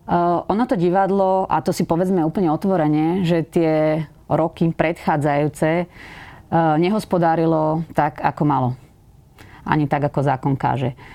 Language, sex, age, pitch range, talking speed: Slovak, female, 30-49, 145-170 Hz, 120 wpm